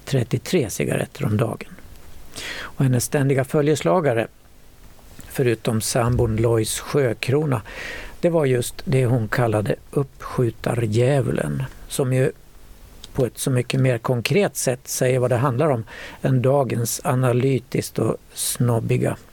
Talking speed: 120 wpm